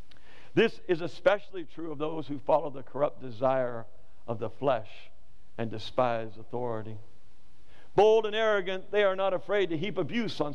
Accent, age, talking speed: American, 60-79, 160 wpm